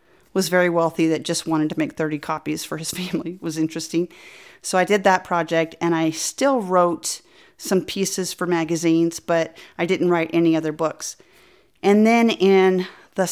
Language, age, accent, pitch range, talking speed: English, 40-59, American, 165-195 Hz, 175 wpm